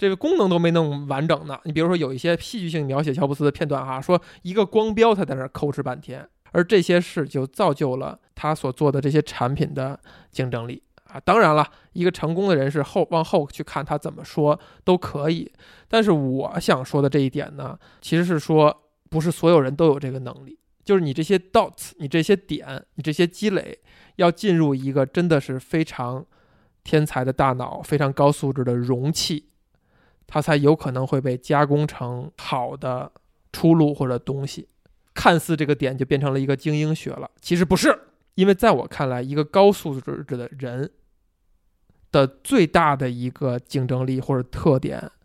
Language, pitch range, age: Chinese, 135-170 Hz, 20-39